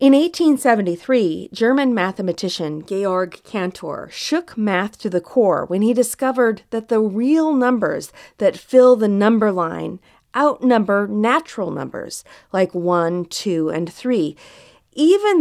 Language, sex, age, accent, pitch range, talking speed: English, female, 40-59, American, 185-275 Hz, 125 wpm